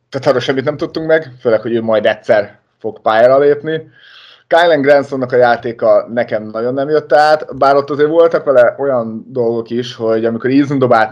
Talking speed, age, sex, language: 190 wpm, 30-49, male, Hungarian